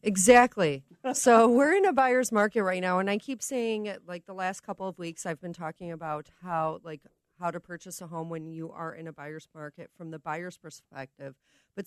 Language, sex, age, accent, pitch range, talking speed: English, female, 30-49, American, 160-205 Hz, 210 wpm